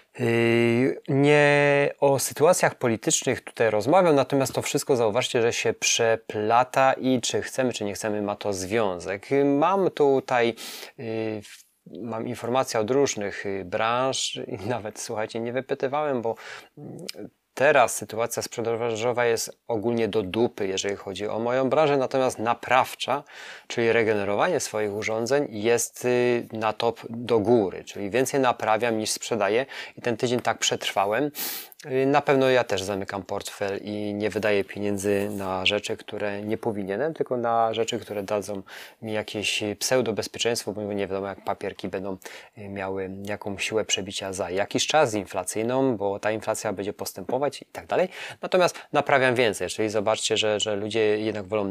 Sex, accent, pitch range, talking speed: male, native, 105-125 Hz, 145 wpm